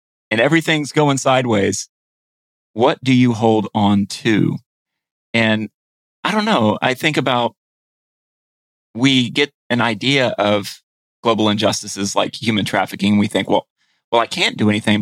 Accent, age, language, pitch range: American, 30-49, English, 110-165 Hz